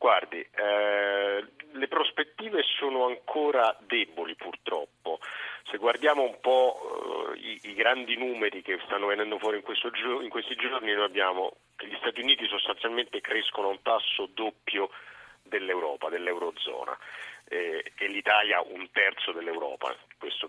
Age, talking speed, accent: 40-59, 130 wpm, native